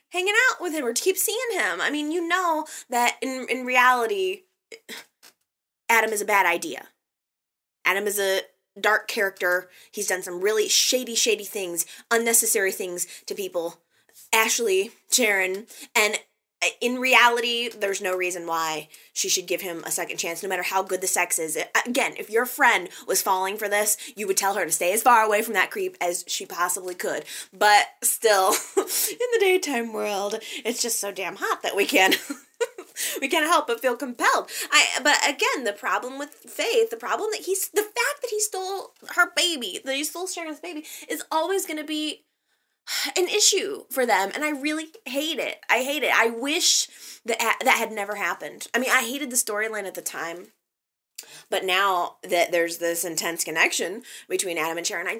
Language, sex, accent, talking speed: English, female, American, 185 wpm